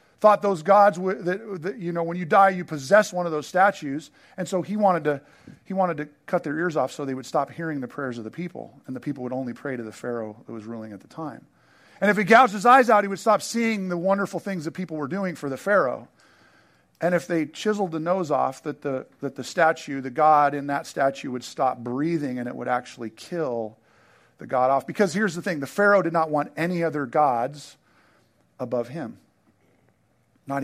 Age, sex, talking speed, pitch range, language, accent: 40-59, male, 230 wpm, 145-205 Hz, English, American